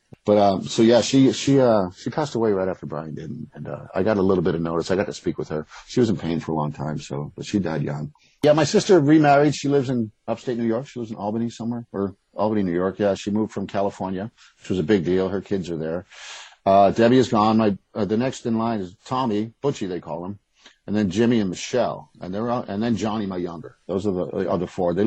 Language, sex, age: English, male, 50-69